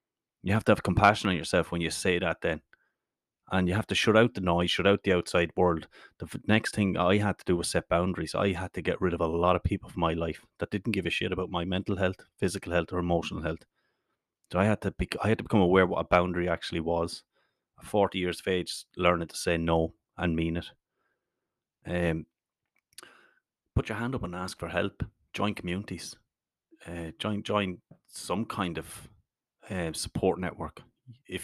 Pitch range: 85-105 Hz